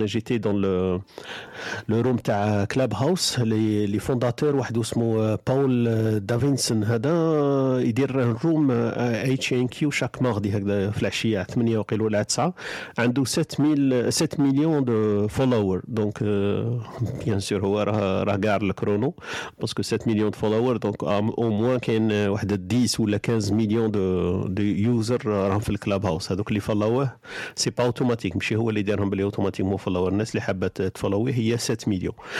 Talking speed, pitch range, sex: 125 wpm, 105-130 Hz, male